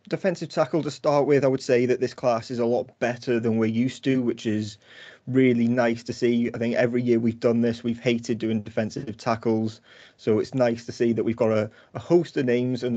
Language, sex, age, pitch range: English, male, 30-49, 110-125 Hz